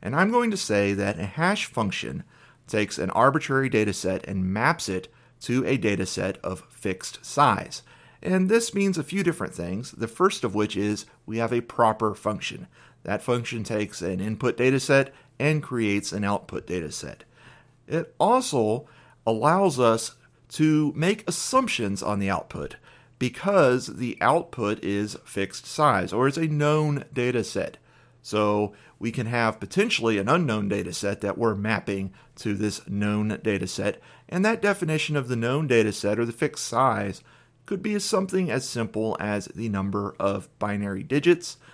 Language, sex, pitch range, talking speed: English, male, 105-135 Hz, 165 wpm